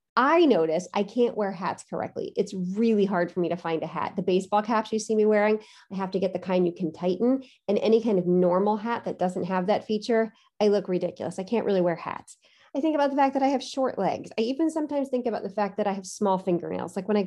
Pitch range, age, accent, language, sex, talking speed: 185-270 Hz, 30-49, American, English, female, 265 wpm